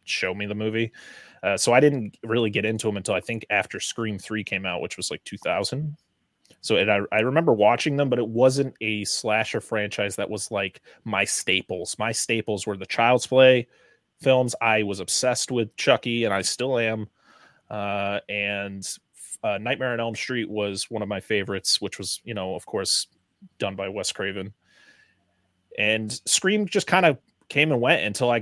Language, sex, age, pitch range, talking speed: English, male, 20-39, 105-130 Hz, 190 wpm